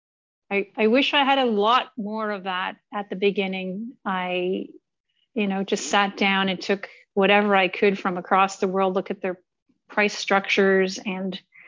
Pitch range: 185-215 Hz